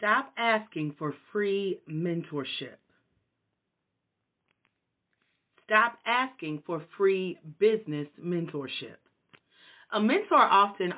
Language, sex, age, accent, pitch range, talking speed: English, female, 30-49, American, 150-215 Hz, 75 wpm